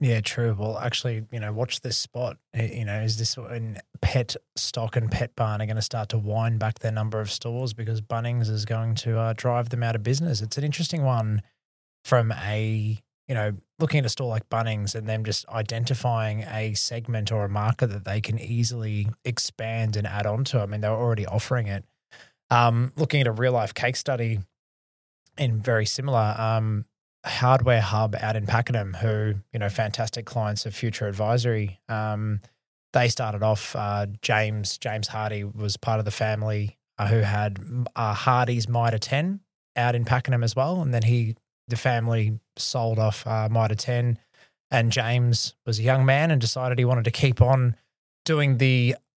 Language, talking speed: English, 190 wpm